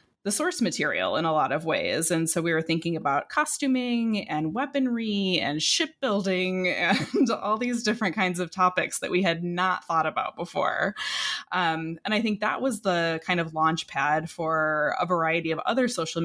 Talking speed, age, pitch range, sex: 185 wpm, 20-39, 165-210 Hz, female